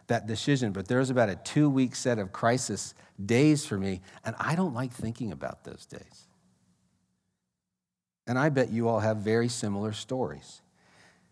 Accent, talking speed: American, 165 wpm